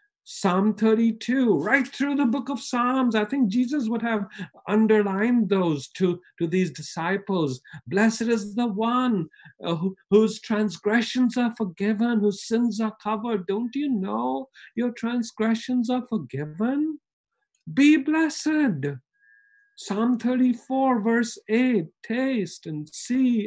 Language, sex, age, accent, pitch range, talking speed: English, male, 50-69, Indian, 200-255 Hz, 125 wpm